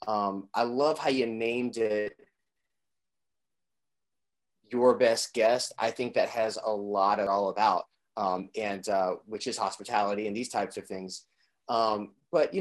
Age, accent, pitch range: 30-49, American, 105-130 Hz